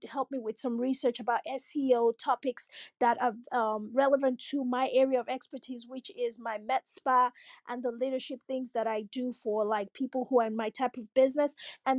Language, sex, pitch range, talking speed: English, female, 245-280 Hz, 200 wpm